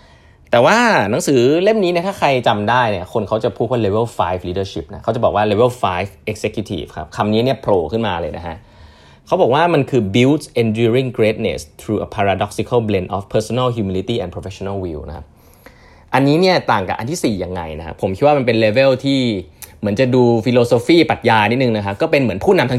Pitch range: 100-135 Hz